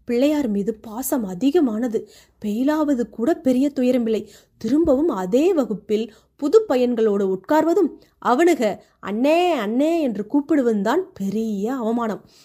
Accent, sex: native, female